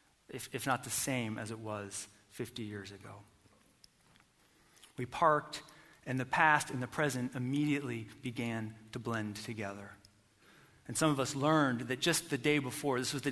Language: English